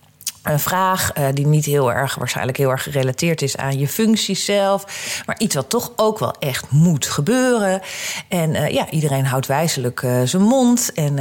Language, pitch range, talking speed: Dutch, 140-200 Hz, 185 wpm